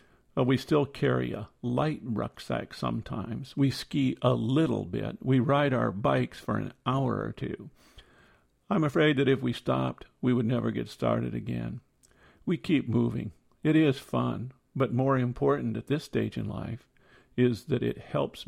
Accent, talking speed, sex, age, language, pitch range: American, 165 wpm, male, 50-69, English, 80-135 Hz